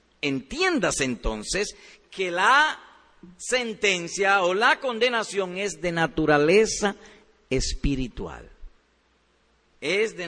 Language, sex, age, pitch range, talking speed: Spanish, male, 50-69, 170-245 Hz, 80 wpm